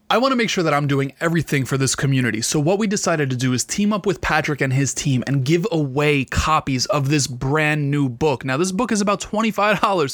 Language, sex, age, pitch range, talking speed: English, male, 20-39, 155-200 Hz, 245 wpm